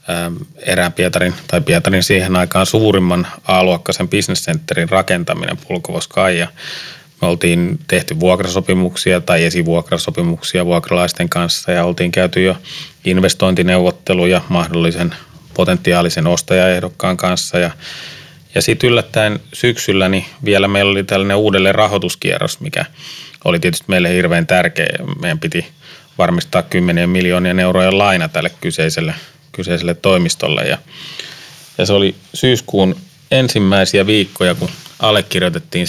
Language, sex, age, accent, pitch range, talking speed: Finnish, male, 30-49, native, 90-105 Hz, 115 wpm